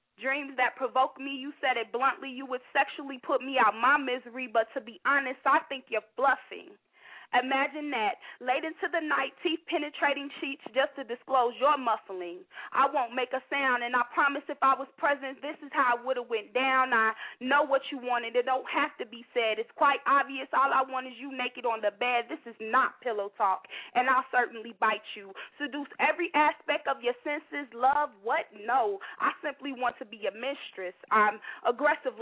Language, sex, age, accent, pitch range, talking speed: English, female, 20-39, American, 235-280 Hz, 205 wpm